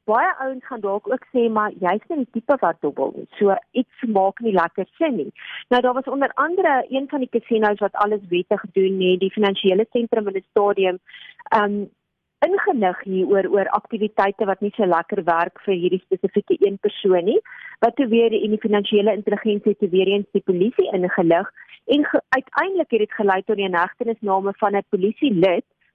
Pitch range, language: 195-250 Hz, Dutch